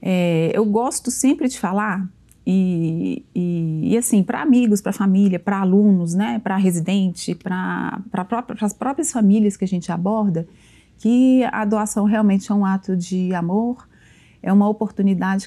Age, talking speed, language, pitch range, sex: 30-49, 145 wpm, Portuguese, 185-225 Hz, female